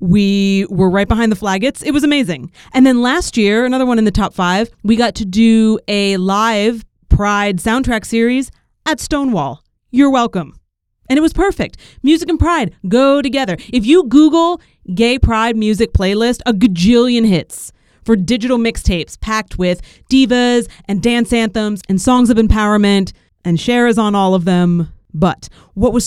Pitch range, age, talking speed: 185-250 Hz, 30-49, 170 wpm